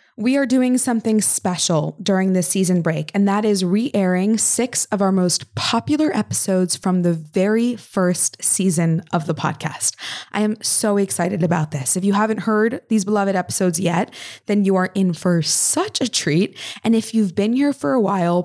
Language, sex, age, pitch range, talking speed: English, female, 20-39, 175-220 Hz, 185 wpm